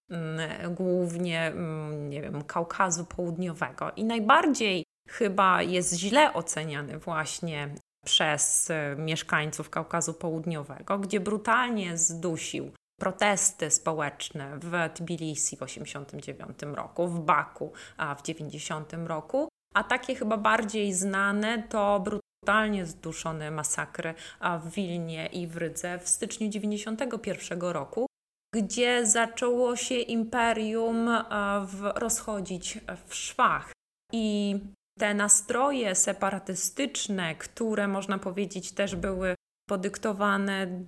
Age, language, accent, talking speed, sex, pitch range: 20-39, Polish, native, 95 wpm, female, 165-210 Hz